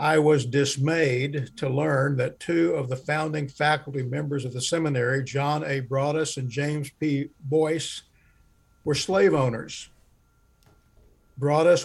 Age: 60-79